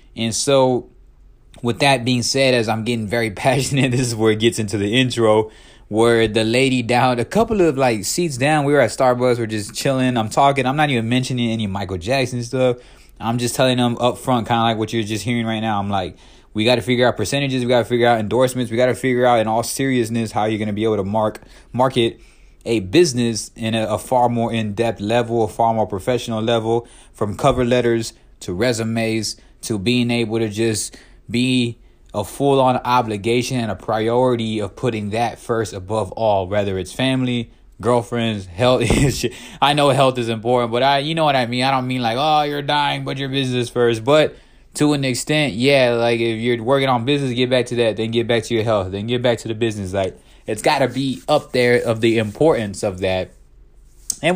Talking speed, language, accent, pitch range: 220 wpm, English, American, 110-130 Hz